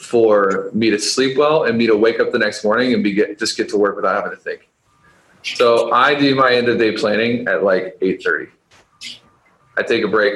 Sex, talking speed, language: male, 225 wpm, English